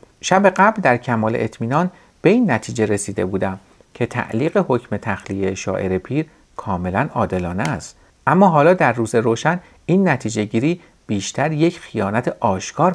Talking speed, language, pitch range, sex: 140 wpm, Persian, 105-175 Hz, male